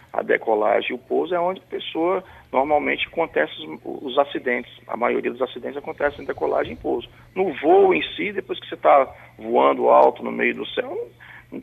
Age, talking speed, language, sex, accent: 40-59, 205 wpm, Portuguese, male, Brazilian